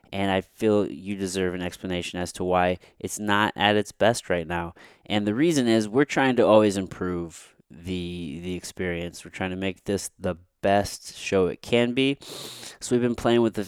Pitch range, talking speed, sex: 95-115 Hz, 200 wpm, male